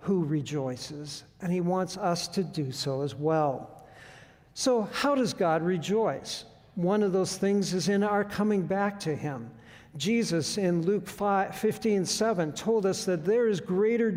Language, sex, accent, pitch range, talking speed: English, male, American, 165-215 Hz, 160 wpm